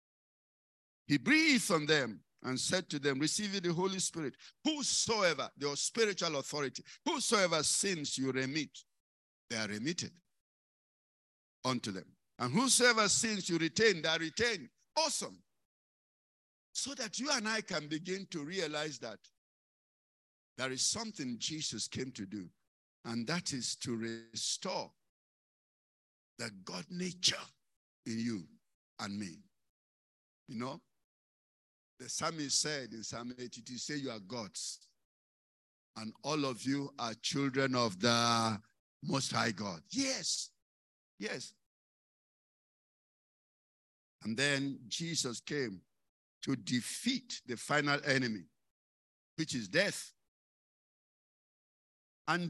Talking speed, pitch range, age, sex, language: 115 wpm, 120-185 Hz, 60-79, male, English